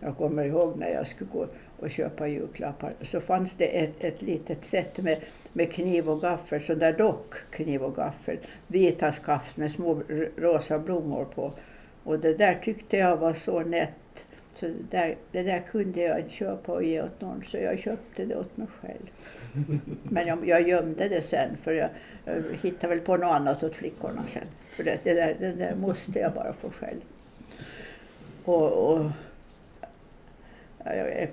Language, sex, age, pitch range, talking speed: Swedish, female, 60-79, 155-175 Hz, 180 wpm